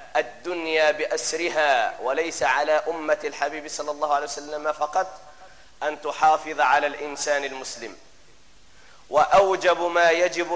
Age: 40-59